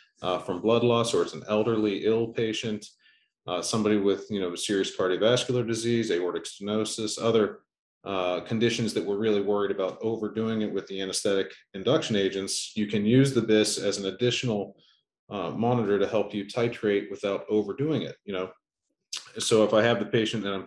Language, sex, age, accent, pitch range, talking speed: English, male, 40-59, American, 100-115 Hz, 180 wpm